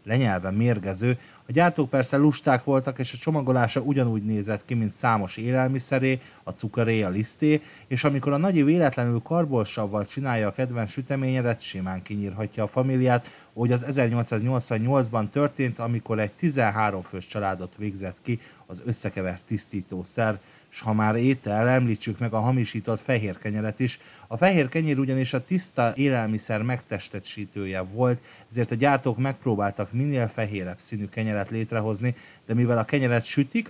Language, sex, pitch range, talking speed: Hungarian, male, 110-135 Hz, 145 wpm